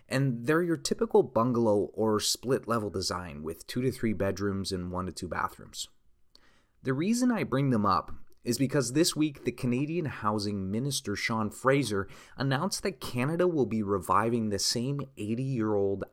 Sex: male